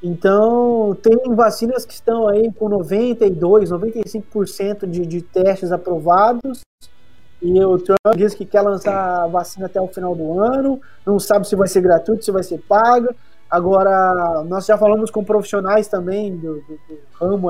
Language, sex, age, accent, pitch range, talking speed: Portuguese, male, 20-39, Brazilian, 185-235 Hz, 165 wpm